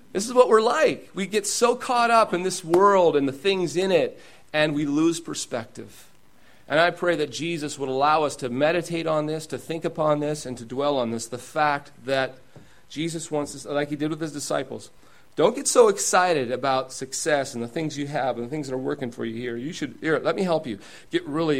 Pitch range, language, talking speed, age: 105-155 Hz, English, 235 wpm, 40-59